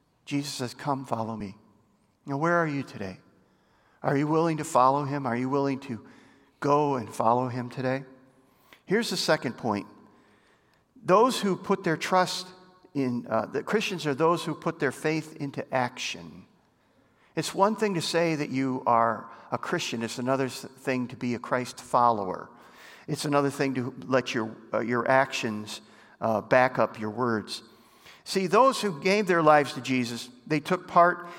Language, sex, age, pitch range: English, male, 50-69, 125-165 Hz